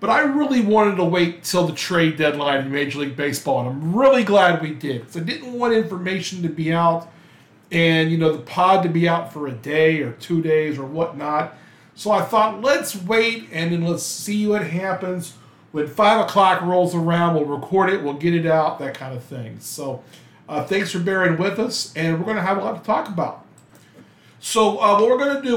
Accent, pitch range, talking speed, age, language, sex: American, 160-210 Hz, 225 wpm, 40-59, English, male